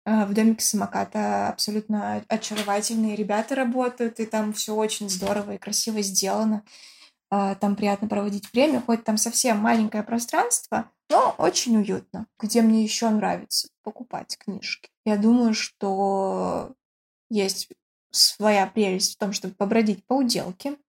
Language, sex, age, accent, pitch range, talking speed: Russian, female, 20-39, native, 205-235 Hz, 130 wpm